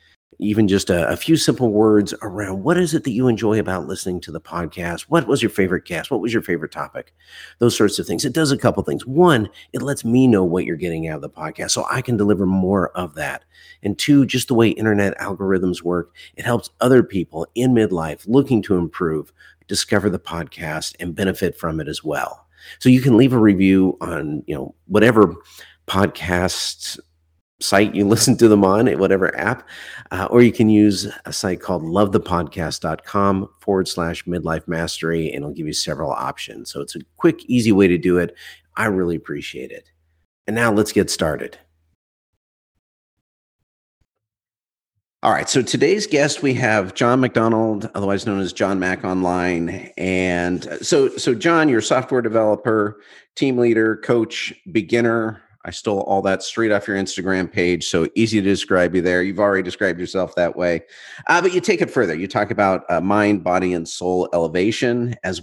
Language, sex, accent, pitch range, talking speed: English, male, American, 90-115 Hz, 185 wpm